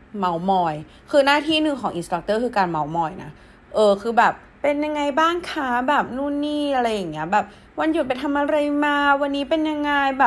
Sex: female